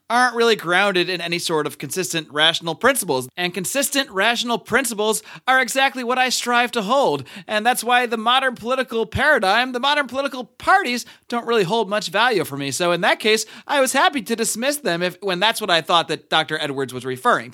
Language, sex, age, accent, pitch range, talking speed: English, male, 30-49, American, 155-235 Hz, 205 wpm